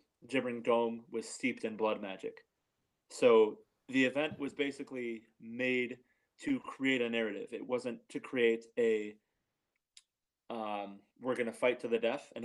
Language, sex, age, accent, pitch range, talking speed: English, male, 30-49, American, 115-145 Hz, 145 wpm